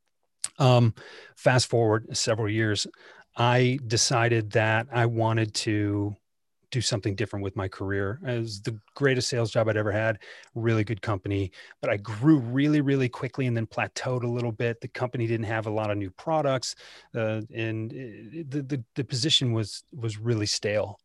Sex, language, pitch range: male, English, 105-130 Hz